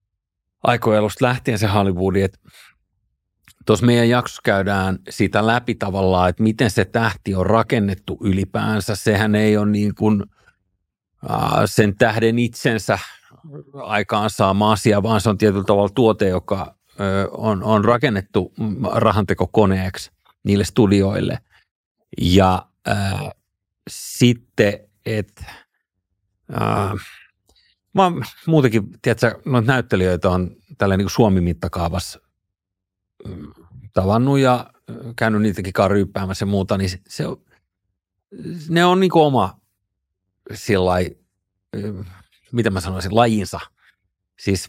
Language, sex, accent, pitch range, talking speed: Finnish, male, native, 95-120 Hz, 105 wpm